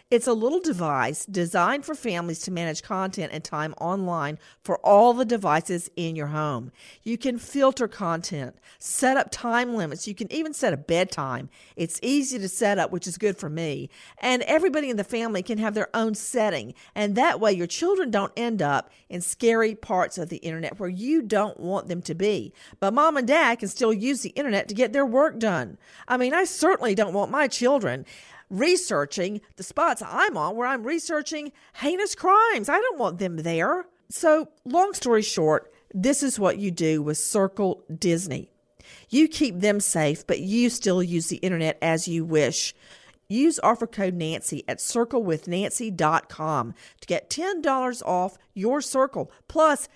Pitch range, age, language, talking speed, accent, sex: 175-265 Hz, 50-69, English, 180 wpm, American, female